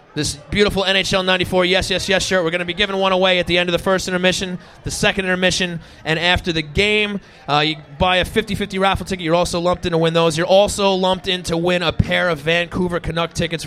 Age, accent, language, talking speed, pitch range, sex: 30-49, American, English, 240 wpm, 160-190 Hz, male